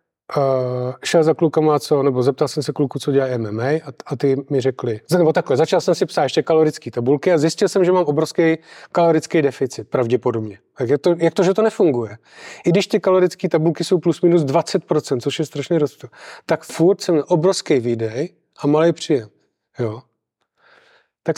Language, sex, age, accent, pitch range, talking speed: Czech, male, 30-49, native, 140-165 Hz, 180 wpm